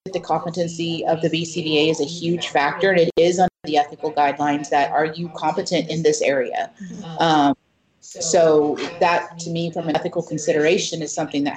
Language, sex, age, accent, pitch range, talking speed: English, female, 40-59, American, 155-180 Hz, 180 wpm